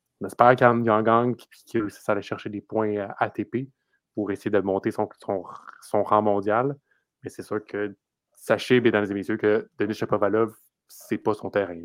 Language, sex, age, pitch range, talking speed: French, male, 30-49, 105-130 Hz, 180 wpm